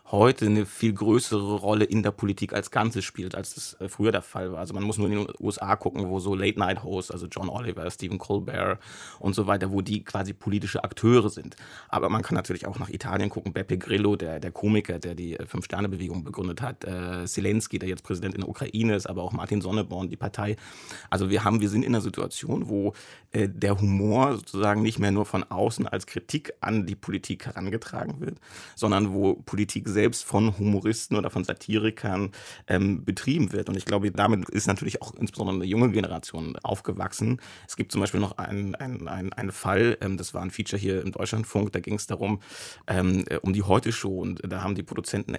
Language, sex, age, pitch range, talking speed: German, male, 30-49, 95-110 Hz, 205 wpm